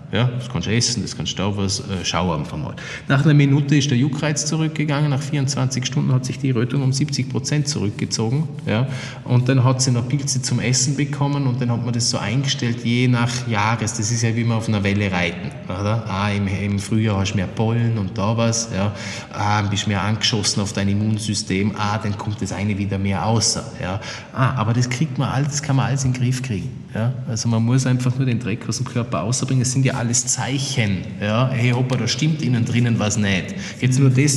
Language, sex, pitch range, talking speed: German, male, 110-135 Hz, 225 wpm